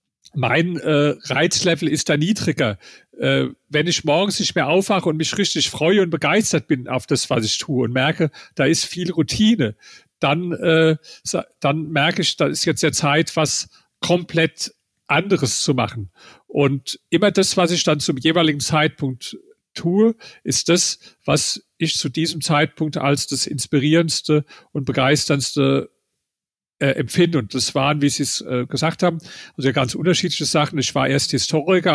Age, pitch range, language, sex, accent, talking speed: 50-69, 140-165 Hz, German, male, German, 160 wpm